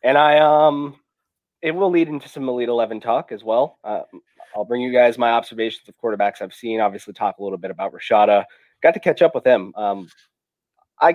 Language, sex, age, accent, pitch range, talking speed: English, male, 30-49, American, 105-145 Hz, 210 wpm